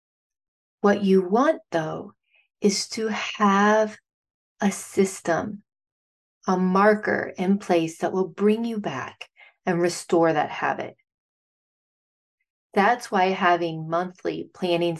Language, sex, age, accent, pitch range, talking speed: English, female, 30-49, American, 175-210 Hz, 110 wpm